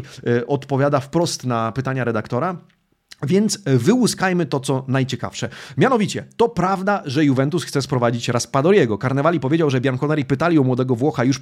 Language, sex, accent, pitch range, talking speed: Polish, male, native, 130-175 Hz, 140 wpm